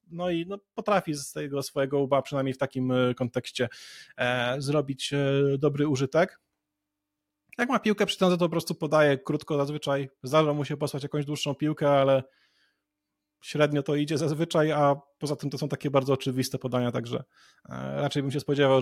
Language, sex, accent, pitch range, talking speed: Polish, male, native, 130-150 Hz, 165 wpm